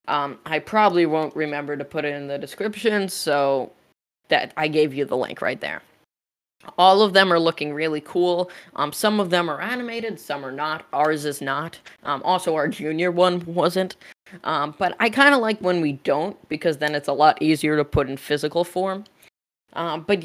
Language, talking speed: English, 200 wpm